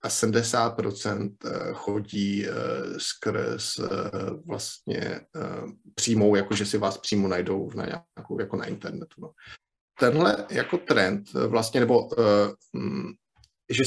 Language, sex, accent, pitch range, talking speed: Czech, male, native, 105-125 Hz, 100 wpm